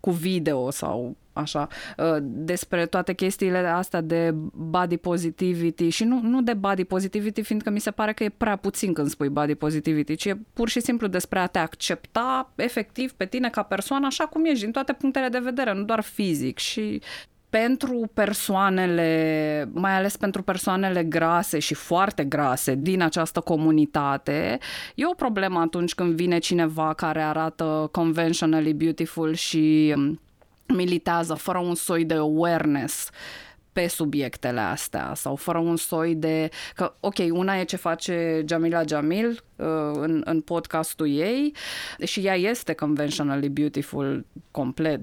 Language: Romanian